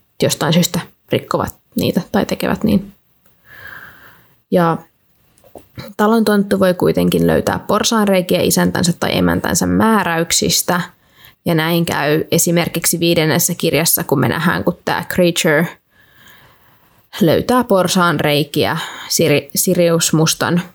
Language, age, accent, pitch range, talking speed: Finnish, 20-39, native, 170-195 Hz, 95 wpm